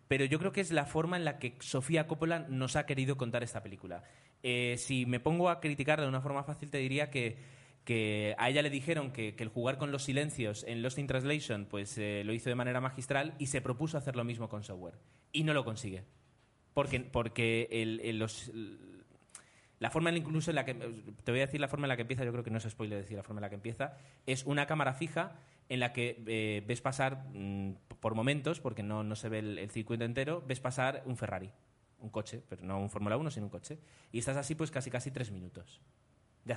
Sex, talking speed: male, 235 wpm